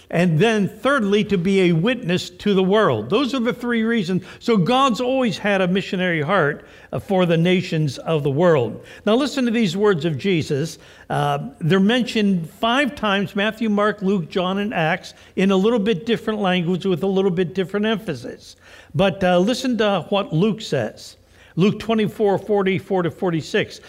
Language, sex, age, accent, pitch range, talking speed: English, male, 60-79, American, 180-230 Hz, 175 wpm